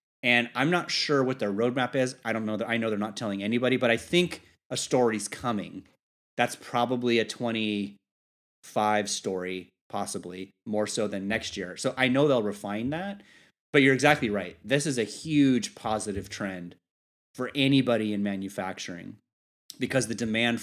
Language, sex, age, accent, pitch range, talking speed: English, male, 30-49, American, 105-130 Hz, 170 wpm